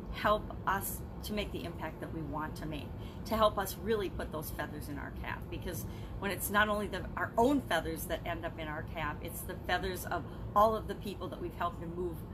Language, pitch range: English, 185-225 Hz